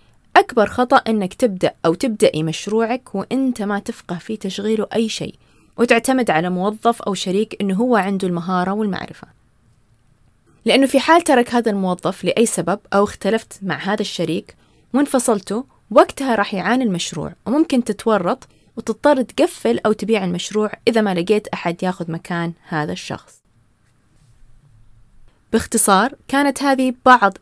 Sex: female